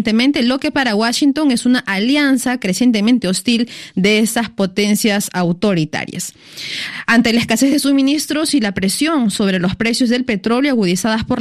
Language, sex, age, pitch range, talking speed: Spanish, female, 20-39, 200-250 Hz, 145 wpm